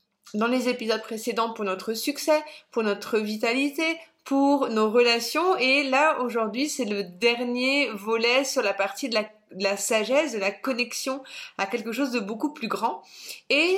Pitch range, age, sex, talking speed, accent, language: 220-275 Hz, 30-49, female, 165 wpm, French, French